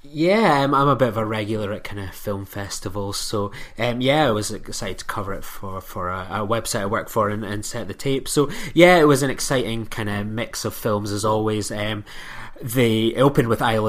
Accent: British